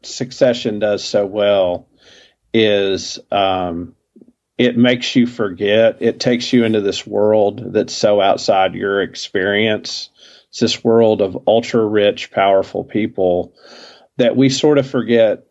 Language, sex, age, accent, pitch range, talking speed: English, male, 40-59, American, 95-115 Hz, 130 wpm